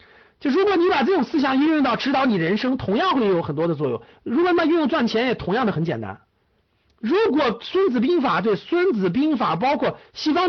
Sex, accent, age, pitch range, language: male, native, 50-69, 195-300 Hz, Chinese